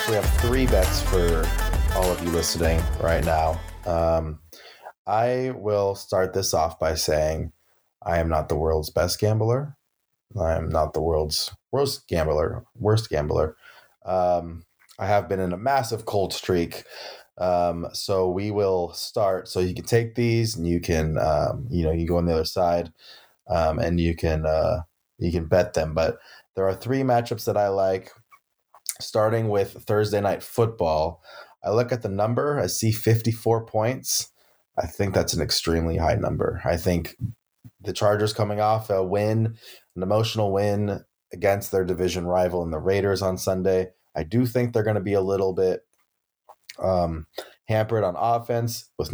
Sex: male